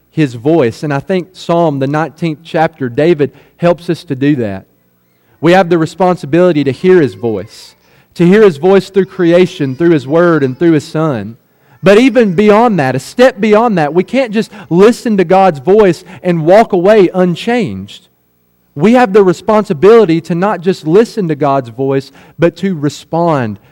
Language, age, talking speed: English, 40-59, 175 wpm